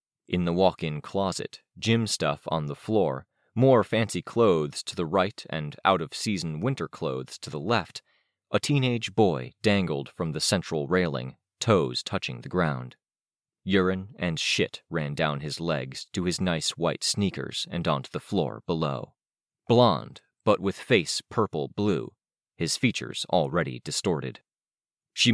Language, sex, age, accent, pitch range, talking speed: English, male, 30-49, American, 80-110 Hz, 145 wpm